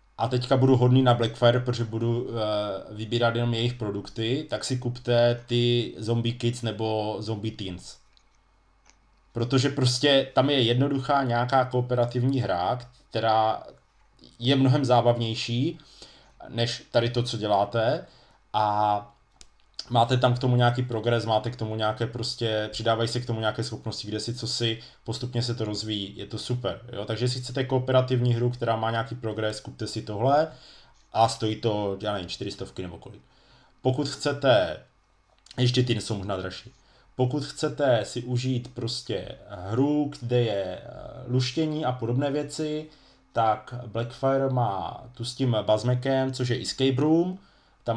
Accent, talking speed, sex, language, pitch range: native, 150 wpm, male, Czech, 110-130 Hz